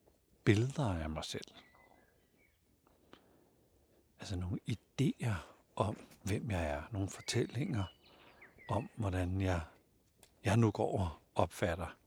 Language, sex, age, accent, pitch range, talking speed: Danish, male, 60-79, native, 90-110 Hz, 105 wpm